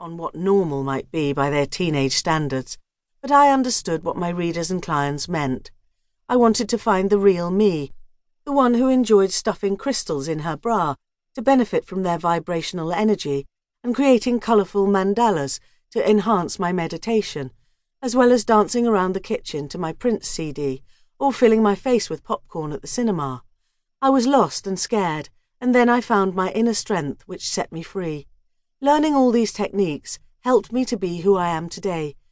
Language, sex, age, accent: English, female, 40-59, British